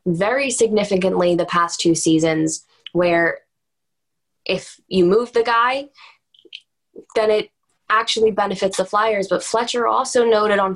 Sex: female